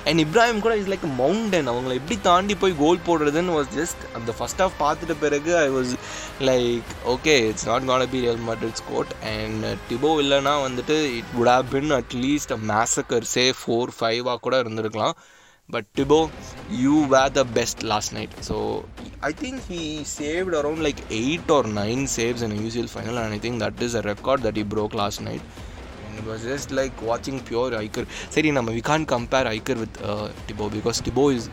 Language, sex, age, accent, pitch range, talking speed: Tamil, male, 20-39, native, 110-140 Hz, 195 wpm